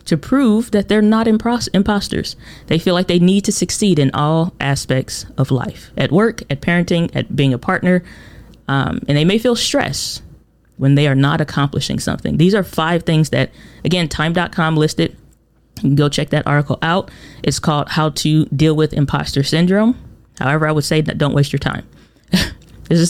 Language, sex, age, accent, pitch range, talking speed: English, female, 20-39, American, 145-180 Hz, 190 wpm